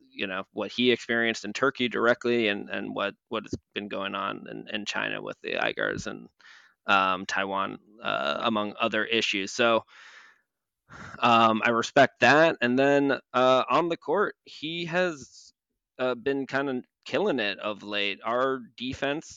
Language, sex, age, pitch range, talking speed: English, male, 20-39, 105-125 Hz, 160 wpm